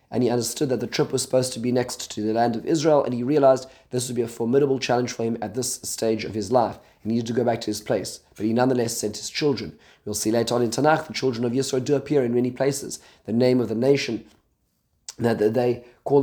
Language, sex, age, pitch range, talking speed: English, male, 30-49, 110-130 Hz, 260 wpm